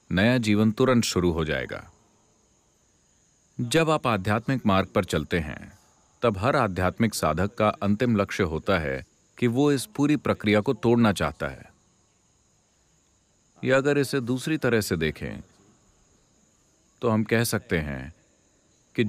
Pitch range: 90-120 Hz